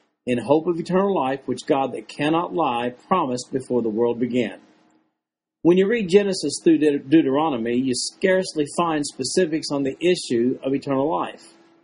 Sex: male